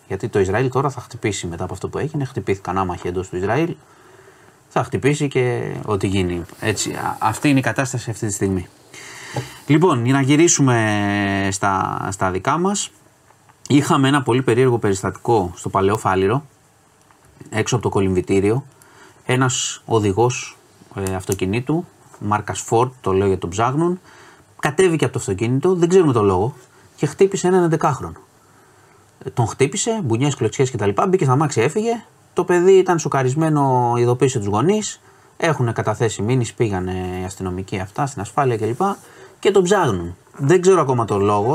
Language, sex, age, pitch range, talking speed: Greek, male, 30-49, 100-145 Hz, 150 wpm